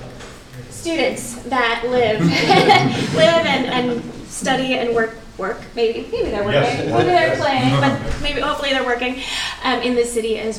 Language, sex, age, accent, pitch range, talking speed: English, female, 20-39, American, 225-265 Hz, 155 wpm